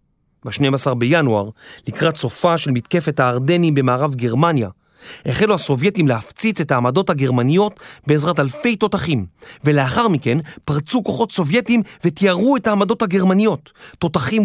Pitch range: 135-190 Hz